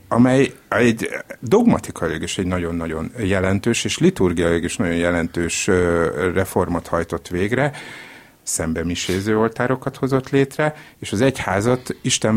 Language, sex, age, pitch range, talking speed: Hungarian, male, 60-79, 95-120 Hz, 115 wpm